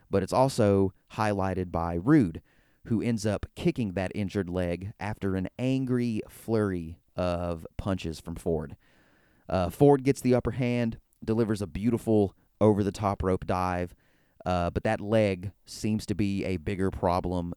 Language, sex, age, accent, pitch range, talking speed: English, male, 30-49, American, 90-115 Hz, 145 wpm